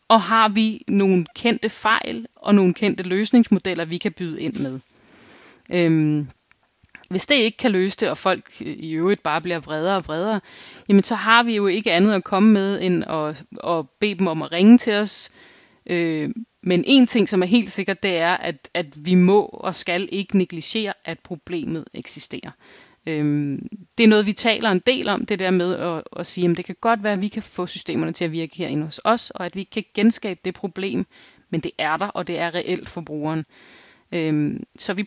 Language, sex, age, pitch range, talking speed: Danish, female, 30-49, 170-215 Hz, 205 wpm